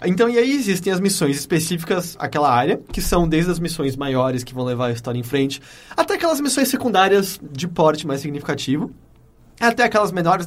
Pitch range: 135-175 Hz